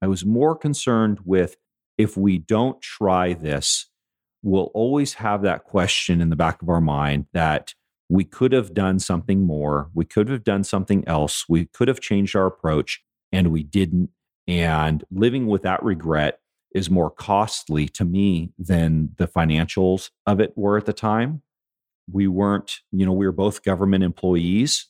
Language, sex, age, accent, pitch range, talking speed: English, male, 40-59, American, 85-105 Hz, 170 wpm